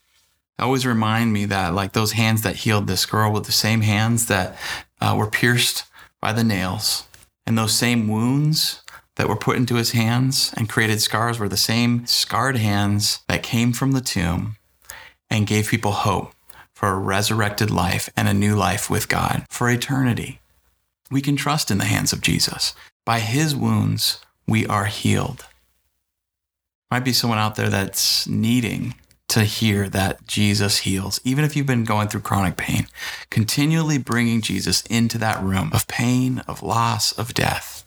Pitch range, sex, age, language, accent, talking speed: 100-120 Hz, male, 30-49, English, American, 170 wpm